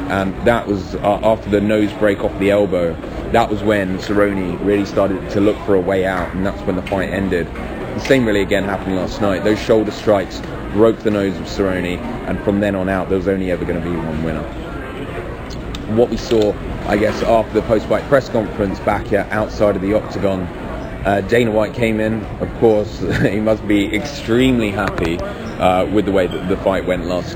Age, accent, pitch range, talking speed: 20-39, British, 90-105 Hz, 210 wpm